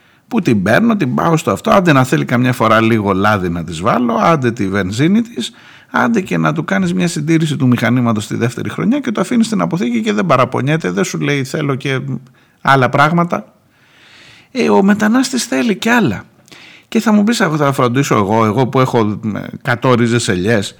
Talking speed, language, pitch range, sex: 195 wpm, Greek, 110-170 Hz, male